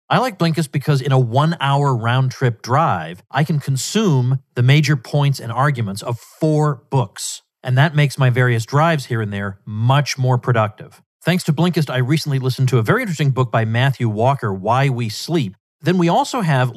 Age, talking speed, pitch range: 40-59, 190 wpm, 115-155 Hz